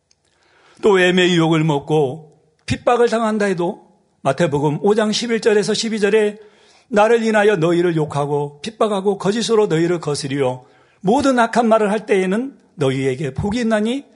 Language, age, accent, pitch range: Korean, 40-59, native, 170-230 Hz